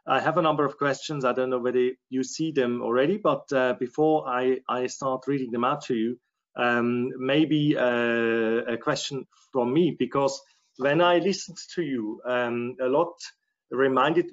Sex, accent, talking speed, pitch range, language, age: male, German, 175 wpm, 125-155 Hz, English, 30-49